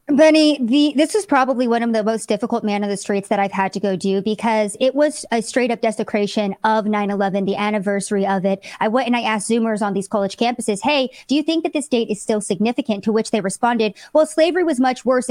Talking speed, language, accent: 240 wpm, English, American